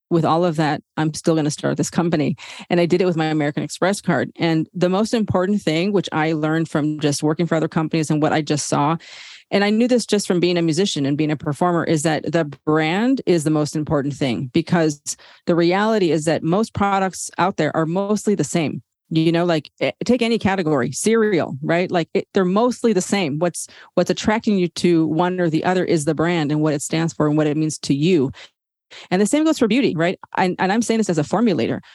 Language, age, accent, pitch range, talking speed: English, 40-59, American, 155-185 Hz, 235 wpm